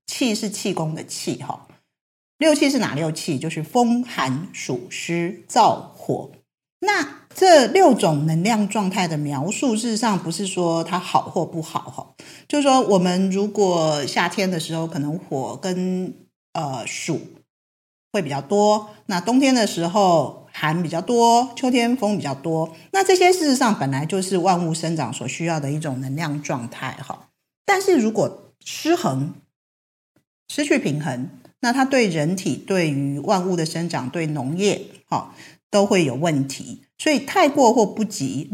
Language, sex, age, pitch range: Chinese, female, 50-69, 155-220 Hz